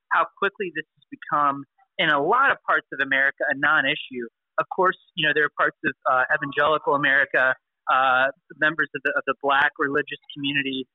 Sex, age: male, 30-49